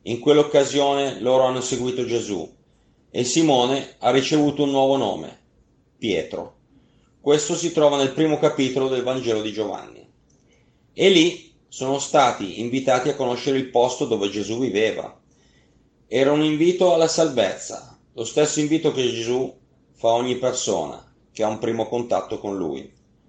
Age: 30-49